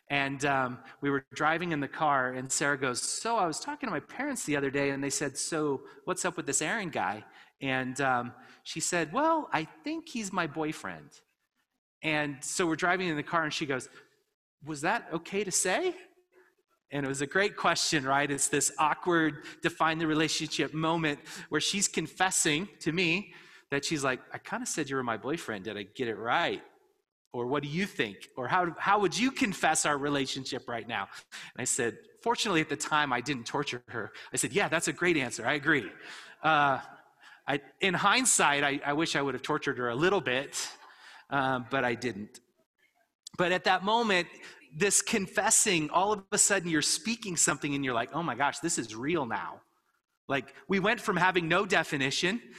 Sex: male